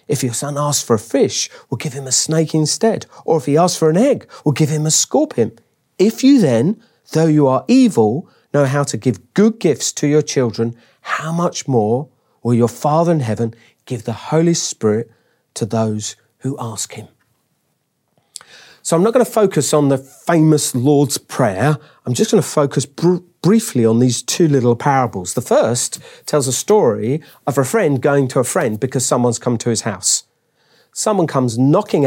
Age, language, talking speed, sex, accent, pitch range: 40-59, English, 190 wpm, male, British, 125-170 Hz